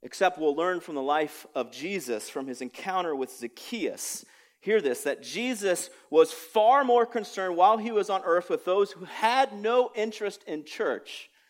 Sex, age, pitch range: male, 40-59, 165-230 Hz